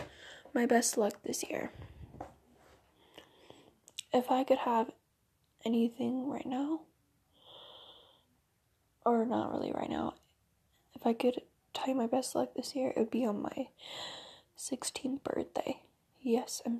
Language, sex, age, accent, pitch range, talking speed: English, female, 10-29, American, 230-280 Hz, 125 wpm